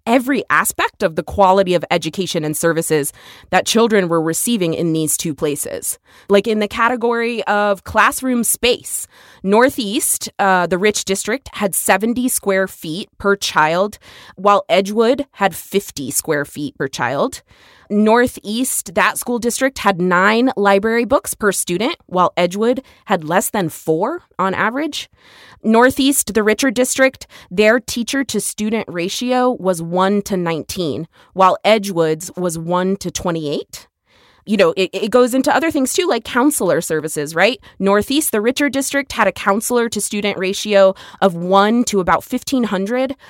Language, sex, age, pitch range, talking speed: English, female, 20-39, 185-240 Hz, 150 wpm